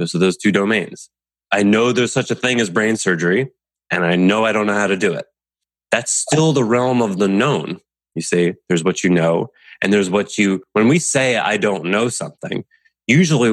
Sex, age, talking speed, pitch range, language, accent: male, 20-39, 215 wpm, 90-120 Hz, English, American